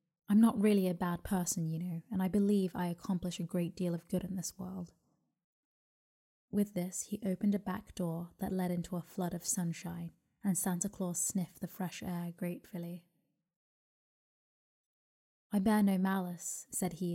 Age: 20-39